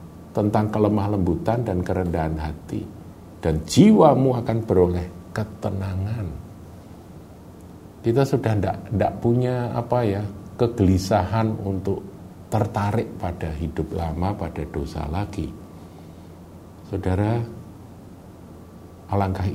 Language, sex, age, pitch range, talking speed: Indonesian, male, 50-69, 85-105 Hz, 90 wpm